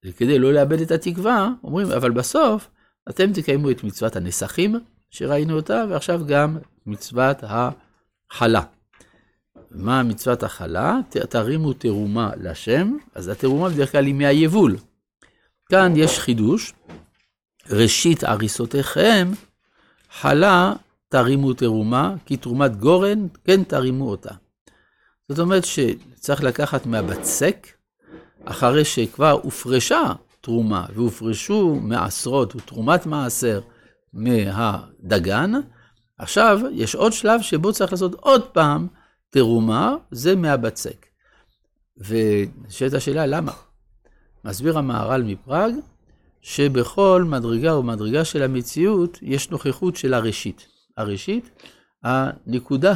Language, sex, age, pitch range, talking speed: Hebrew, male, 60-79, 115-175 Hz, 100 wpm